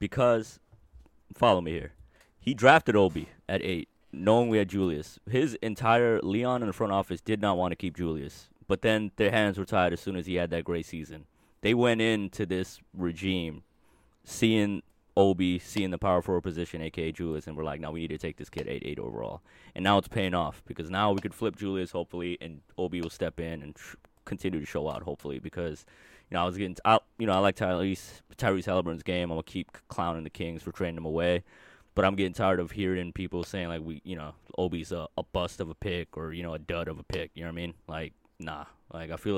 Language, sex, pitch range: English, male, 80-95 Hz